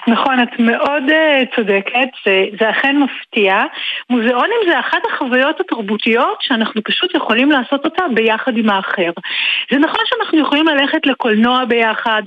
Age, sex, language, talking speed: 40-59, female, Hebrew, 135 wpm